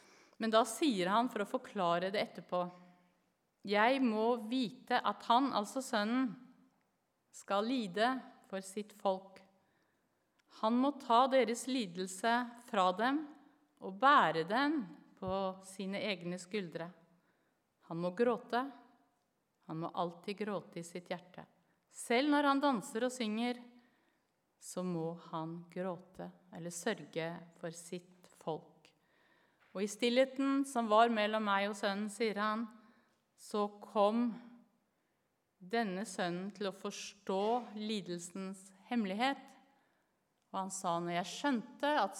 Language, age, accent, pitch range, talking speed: English, 50-69, Swedish, 180-240 Hz, 120 wpm